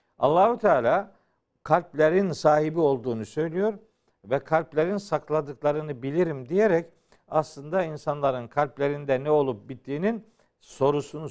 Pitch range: 145-200 Hz